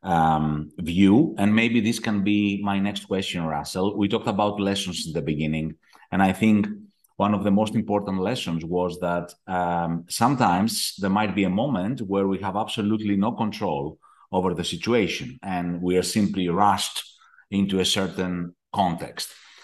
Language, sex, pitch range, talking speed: English, male, 95-125 Hz, 165 wpm